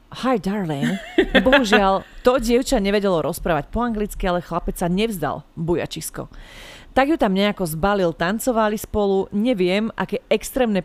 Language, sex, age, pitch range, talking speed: Slovak, female, 30-49, 180-230 Hz, 135 wpm